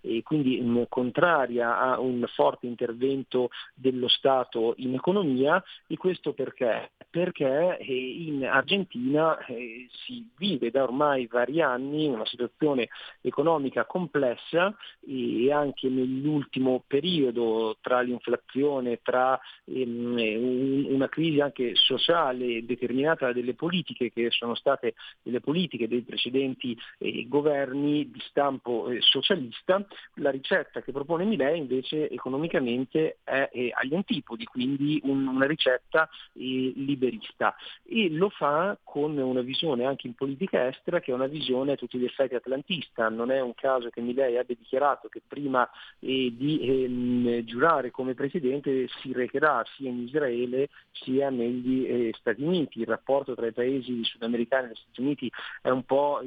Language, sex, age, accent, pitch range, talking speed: Italian, male, 40-59, native, 125-145 Hz, 135 wpm